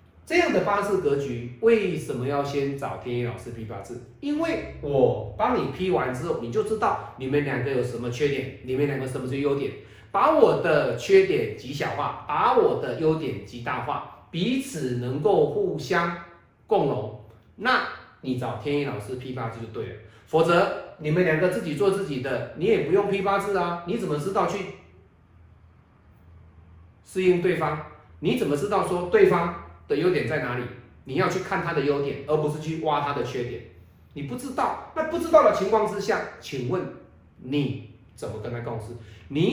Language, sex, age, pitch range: Chinese, male, 30-49, 120-185 Hz